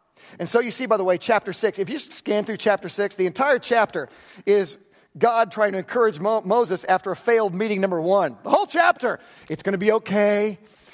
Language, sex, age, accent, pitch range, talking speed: English, male, 40-59, American, 185-235 Hz, 210 wpm